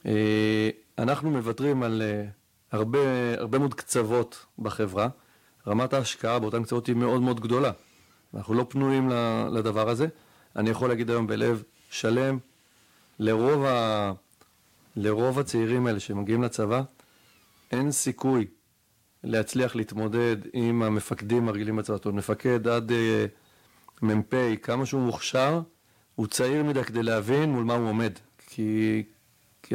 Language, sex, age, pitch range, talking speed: Hebrew, male, 40-59, 110-130 Hz, 120 wpm